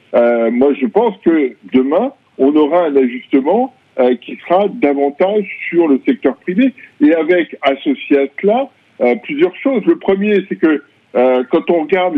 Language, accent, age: French, French, 50-69